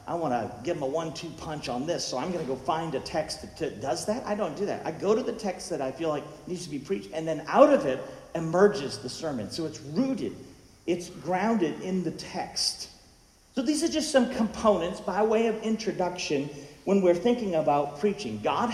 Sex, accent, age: male, American, 50-69